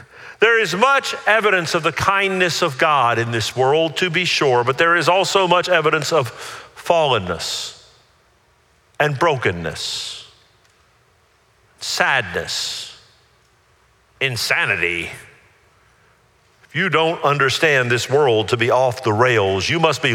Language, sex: English, male